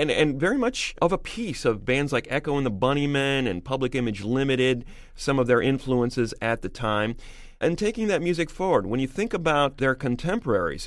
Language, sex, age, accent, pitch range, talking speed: English, male, 40-59, American, 110-145 Hz, 200 wpm